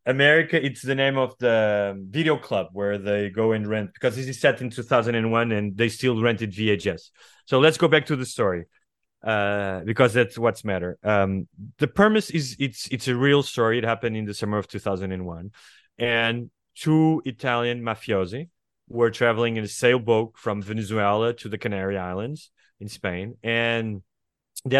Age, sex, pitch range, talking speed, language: 30-49, male, 100-130 Hz, 180 wpm, English